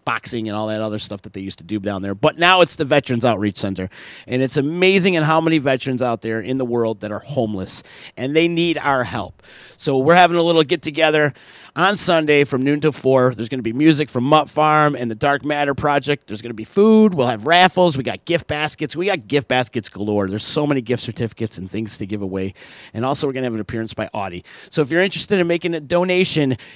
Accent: American